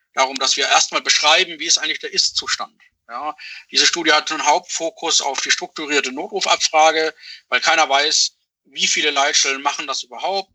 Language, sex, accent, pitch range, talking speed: German, male, German, 125-155 Hz, 165 wpm